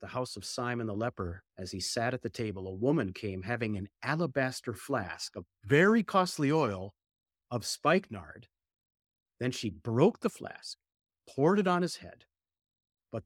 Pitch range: 90-130 Hz